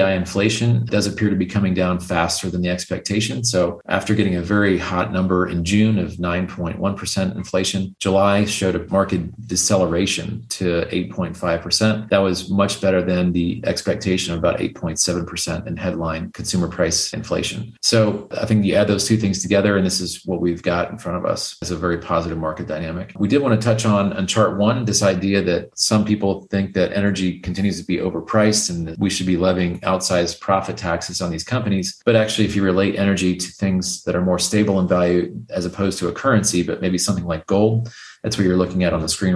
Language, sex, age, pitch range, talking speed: English, male, 40-59, 90-100 Hz, 205 wpm